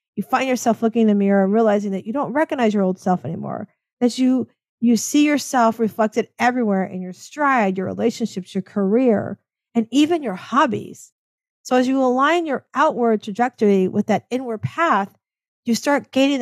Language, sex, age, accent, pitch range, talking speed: English, female, 50-69, American, 205-255 Hz, 180 wpm